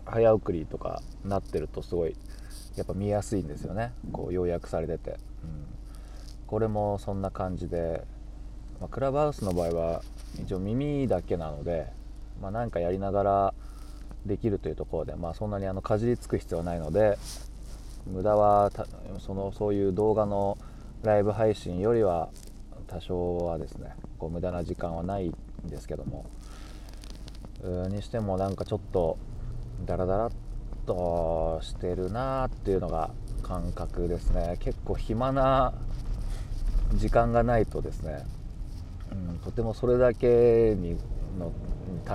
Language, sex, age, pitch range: Japanese, male, 20-39, 90-115 Hz